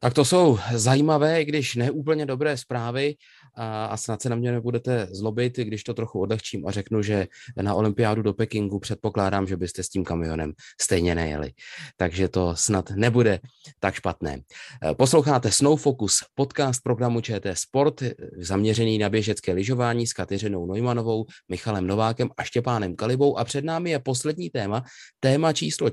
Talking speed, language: 155 wpm, Czech